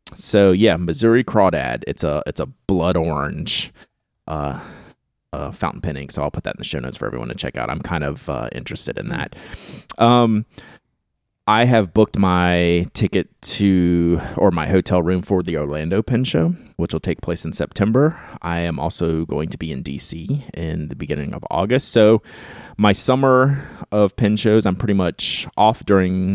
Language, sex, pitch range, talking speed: English, male, 85-110 Hz, 185 wpm